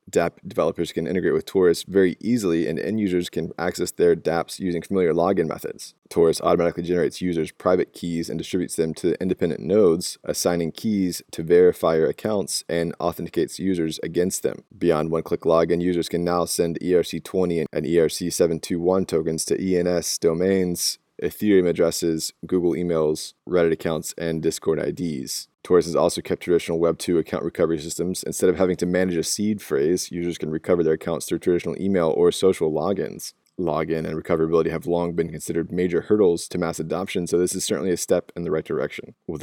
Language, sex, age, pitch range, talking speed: English, male, 20-39, 80-95 Hz, 175 wpm